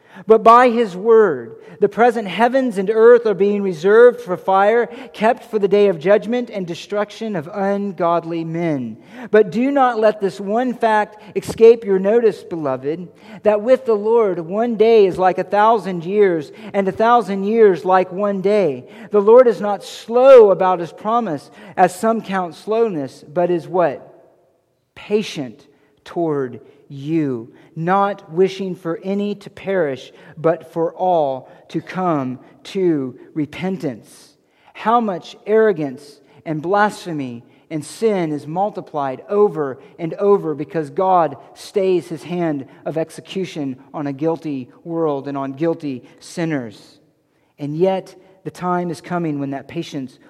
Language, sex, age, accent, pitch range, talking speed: English, male, 40-59, American, 155-210 Hz, 145 wpm